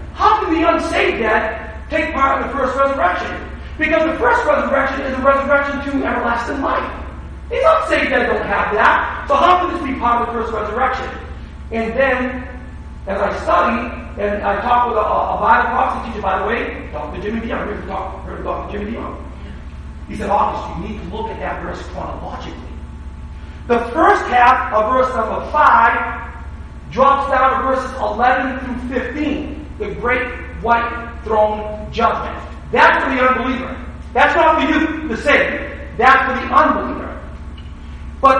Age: 40-59